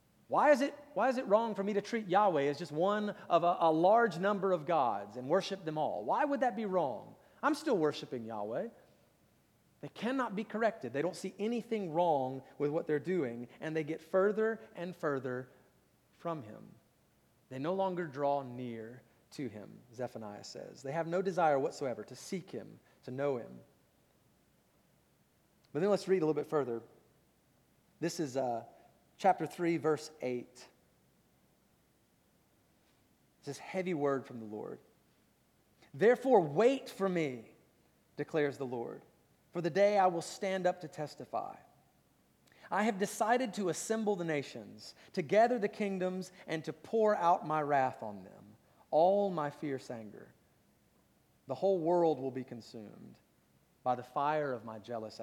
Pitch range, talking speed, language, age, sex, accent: 135-200 Hz, 160 wpm, English, 30-49, male, American